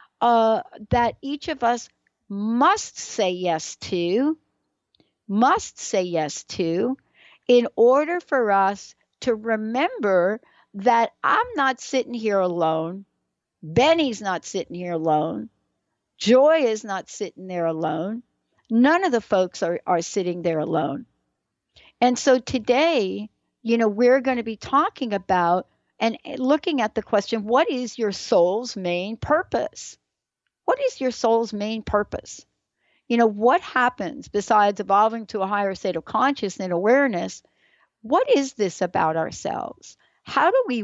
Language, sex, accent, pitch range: English, female, American, 190-255 Hz